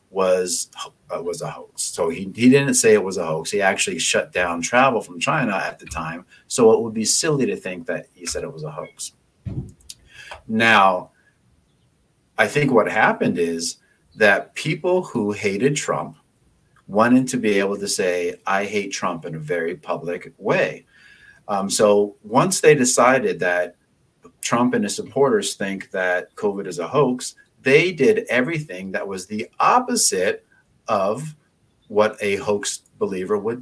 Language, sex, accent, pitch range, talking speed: English, male, American, 95-150 Hz, 165 wpm